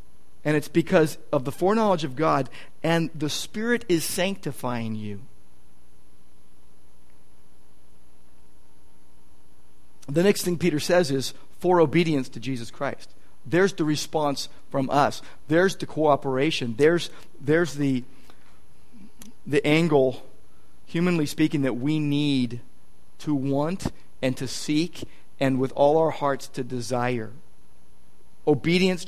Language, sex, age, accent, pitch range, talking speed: English, male, 50-69, American, 120-180 Hz, 115 wpm